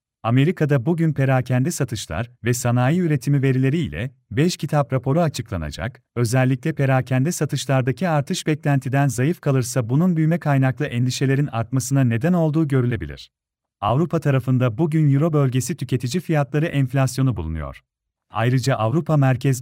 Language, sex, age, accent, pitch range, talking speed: Turkish, male, 40-59, native, 125-155 Hz, 120 wpm